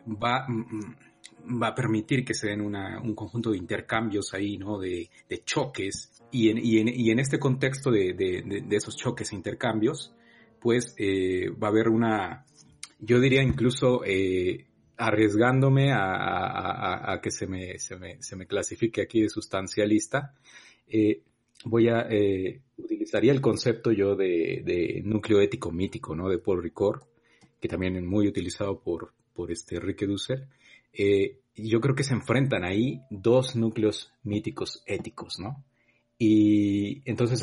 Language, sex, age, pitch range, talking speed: Spanish, male, 40-59, 105-130 Hz, 145 wpm